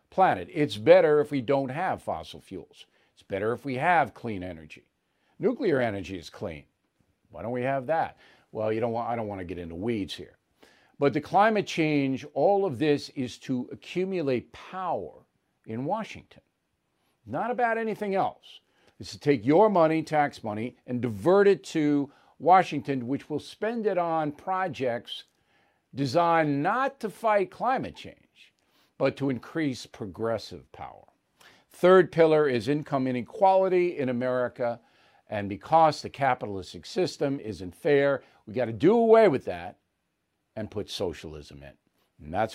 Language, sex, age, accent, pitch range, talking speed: English, male, 50-69, American, 110-160 Hz, 155 wpm